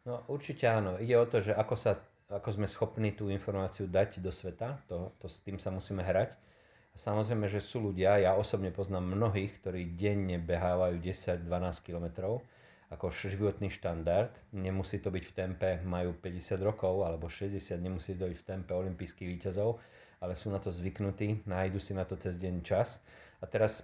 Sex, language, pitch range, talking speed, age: male, Slovak, 95-105 Hz, 180 wpm, 40-59